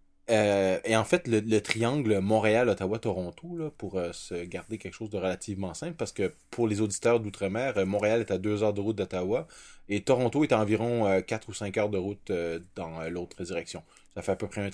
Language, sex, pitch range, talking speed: French, male, 95-110 Hz, 220 wpm